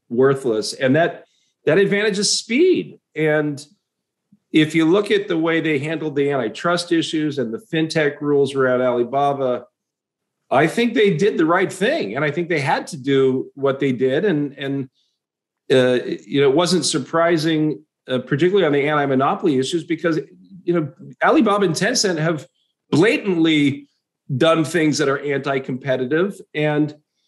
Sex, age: male, 40-59